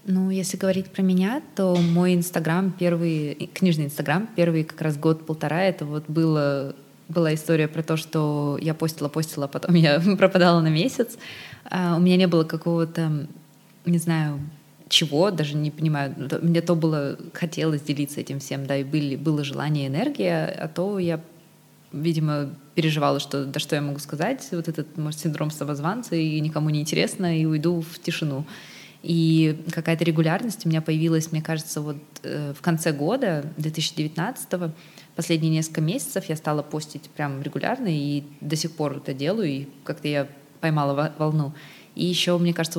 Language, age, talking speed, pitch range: Russian, 20-39, 165 wpm, 145-170 Hz